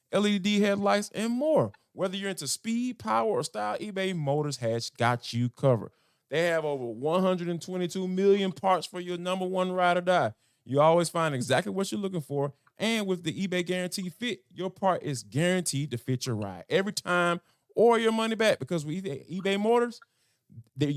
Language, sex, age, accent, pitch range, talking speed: English, male, 20-39, American, 125-185 Hz, 185 wpm